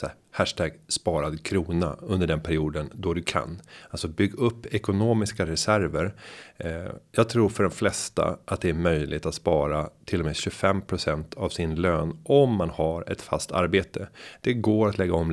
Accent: native